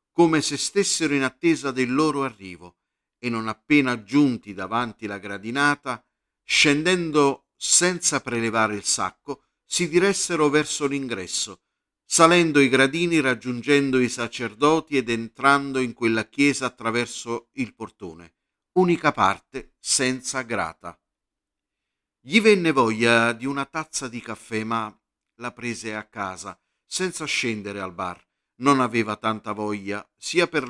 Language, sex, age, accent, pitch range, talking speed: Italian, male, 50-69, native, 110-145 Hz, 125 wpm